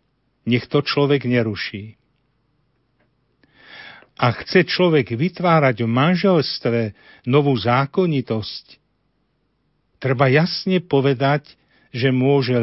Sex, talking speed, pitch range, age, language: male, 80 wpm, 120-150 Hz, 50-69, Slovak